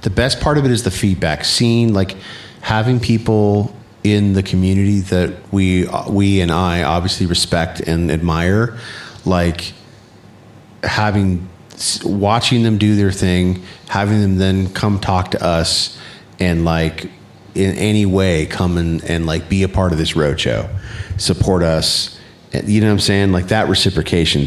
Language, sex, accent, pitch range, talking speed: English, male, American, 85-105 Hz, 155 wpm